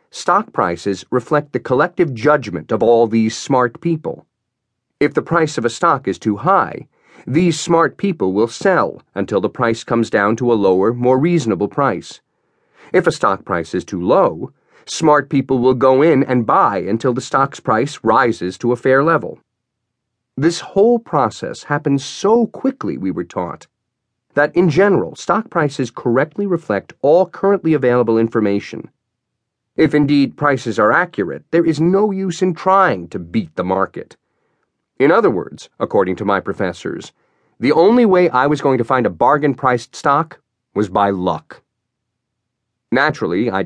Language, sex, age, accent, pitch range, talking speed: English, male, 40-59, American, 115-160 Hz, 160 wpm